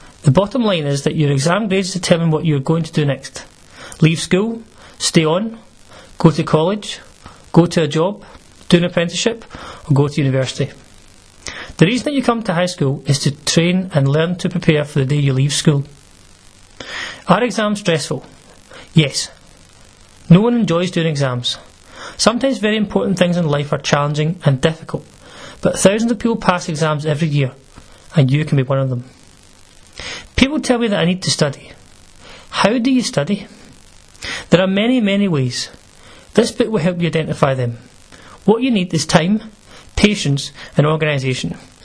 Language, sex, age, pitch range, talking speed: English, male, 30-49, 135-190 Hz, 175 wpm